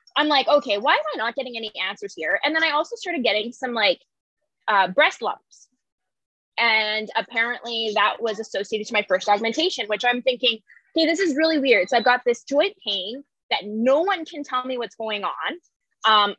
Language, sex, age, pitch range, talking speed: English, female, 20-39, 220-305 Hz, 200 wpm